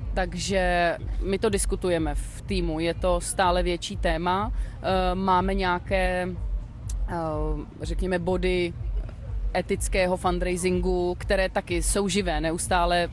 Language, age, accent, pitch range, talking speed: Czech, 30-49, native, 170-195 Hz, 95 wpm